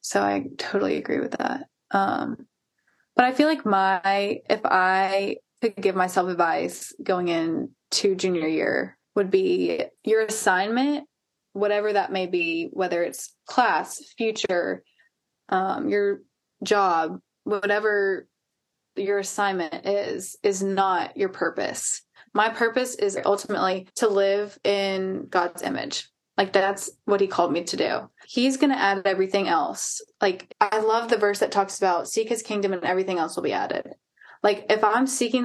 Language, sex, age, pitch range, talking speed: English, female, 20-39, 190-225 Hz, 150 wpm